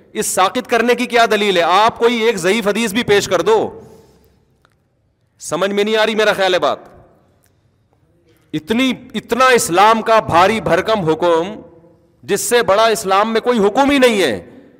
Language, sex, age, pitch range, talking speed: Urdu, male, 40-59, 170-230 Hz, 165 wpm